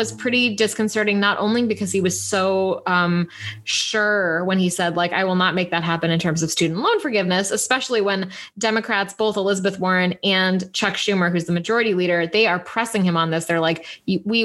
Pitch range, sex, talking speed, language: 180-220 Hz, female, 205 wpm, English